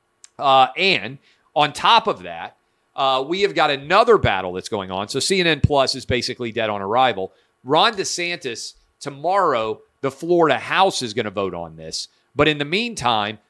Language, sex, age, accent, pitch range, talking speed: English, male, 40-59, American, 120-155 Hz, 175 wpm